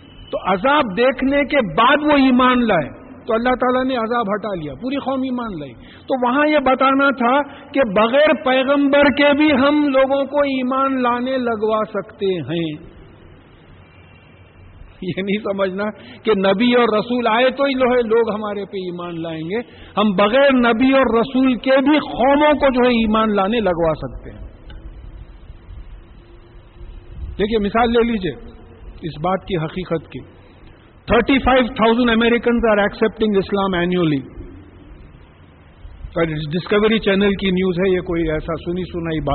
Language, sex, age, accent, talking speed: English, male, 50-69, Indian, 135 wpm